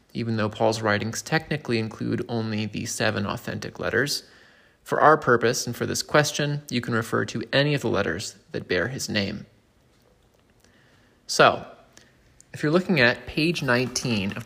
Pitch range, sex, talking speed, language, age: 110-130 Hz, male, 160 wpm, English, 30-49